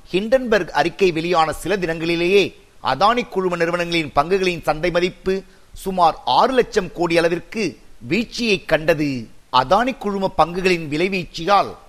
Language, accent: Tamil, native